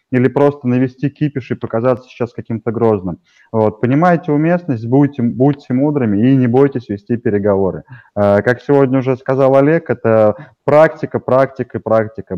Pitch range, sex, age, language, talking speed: 115-140 Hz, male, 20-39, Russian, 140 wpm